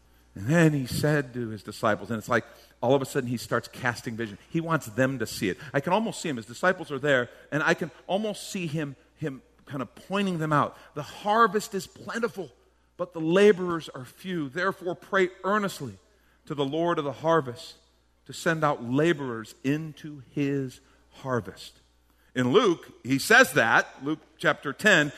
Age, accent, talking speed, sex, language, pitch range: 50-69, American, 185 wpm, male, English, 110-180 Hz